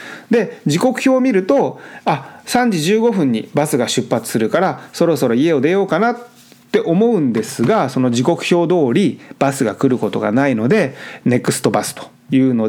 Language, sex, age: Japanese, male, 30-49